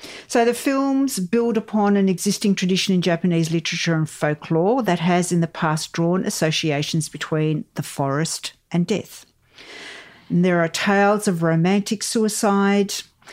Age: 50-69